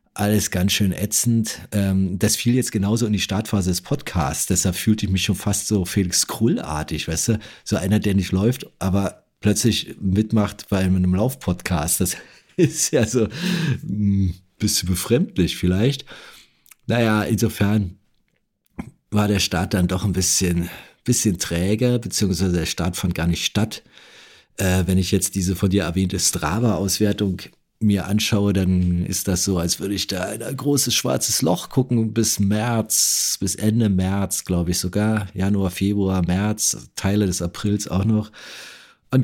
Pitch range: 90-105 Hz